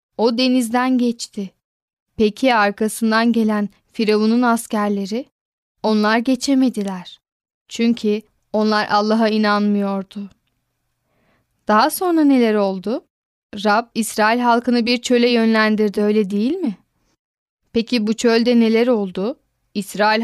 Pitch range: 210-240 Hz